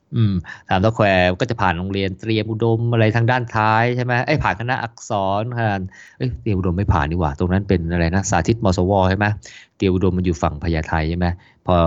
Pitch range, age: 90-110 Hz, 20-39